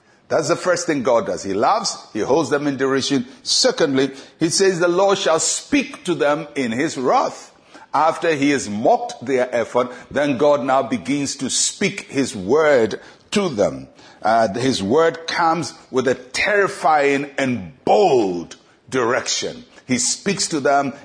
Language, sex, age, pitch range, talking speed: English, male, 60-79, 125-165 Hz, 155 wpm